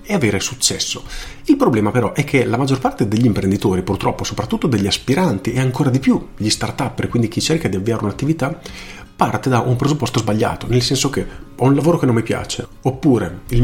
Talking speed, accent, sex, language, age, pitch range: 205 wpm, native, male, Italian, 40-59, 100-130 Hz